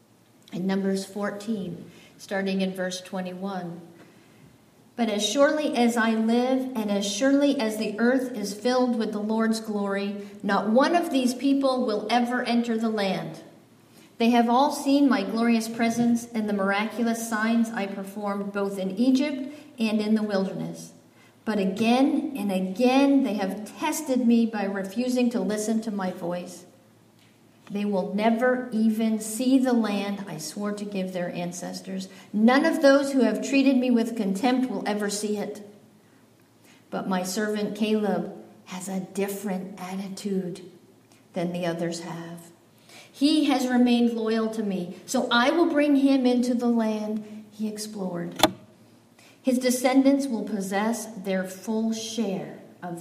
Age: 50-69